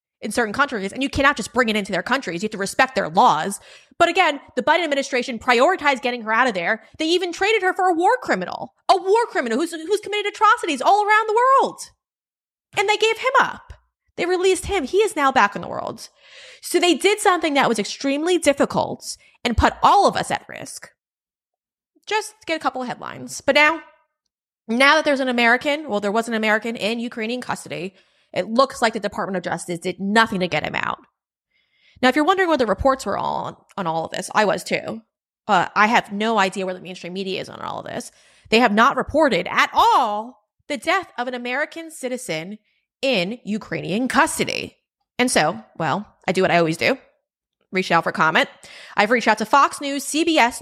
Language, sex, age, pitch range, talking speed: English, female, 20-39, 220-325 Hz, 210 wpm